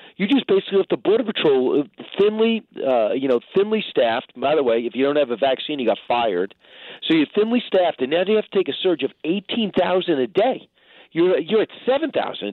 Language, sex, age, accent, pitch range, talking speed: English, male, 50-69, American, 145-215 Hz, 225 wpm